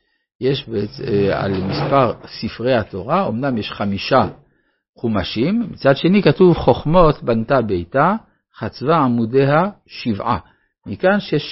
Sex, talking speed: male, 105 wpm